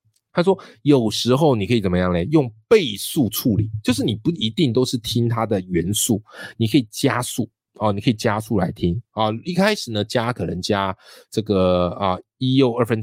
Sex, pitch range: male, 100-130 Hz